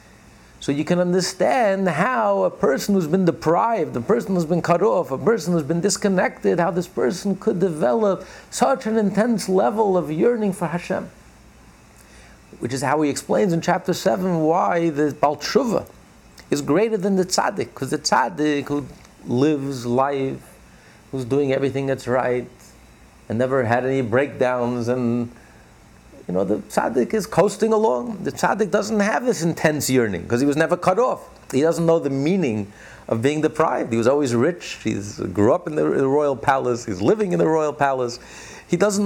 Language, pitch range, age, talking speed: English, 130-195 Hz, 50-69, 175 wpm